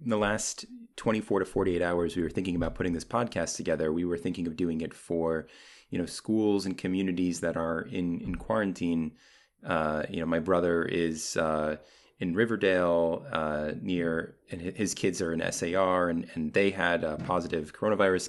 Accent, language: American, English